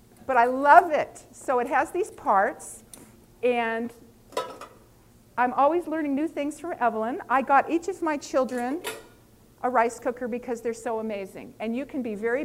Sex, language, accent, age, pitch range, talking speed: female, English, American, 50-69, 210-265 Hz, 170 wpm